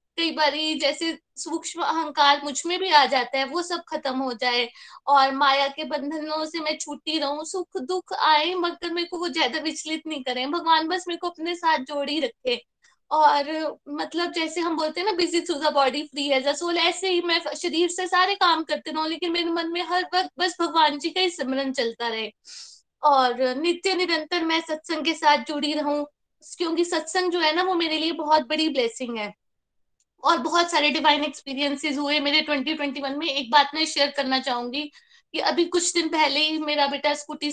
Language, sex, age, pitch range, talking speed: Hindi, female, 20-39, 285-345 Hz, 195 wpm